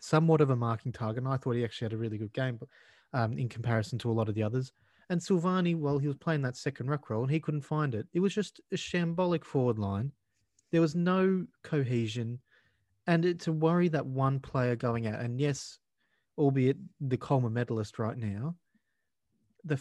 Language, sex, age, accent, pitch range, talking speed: English, male, 30-49, Australian, 115-145 Hz, 205 wpm